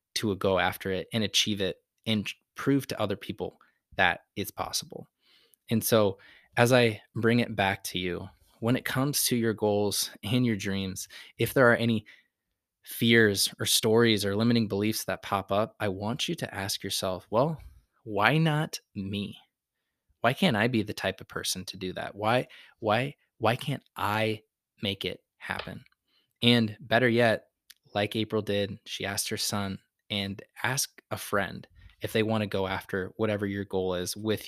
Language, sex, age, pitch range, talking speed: English, male, 20-39, 100-115 Hz, 175 wpm